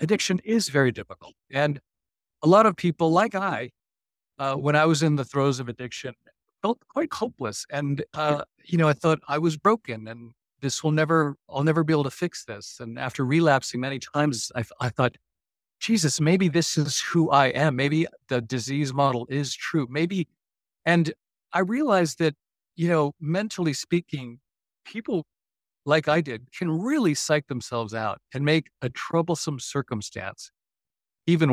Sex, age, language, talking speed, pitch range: male, 50-69, English, 165 wpm, 125-160 Hz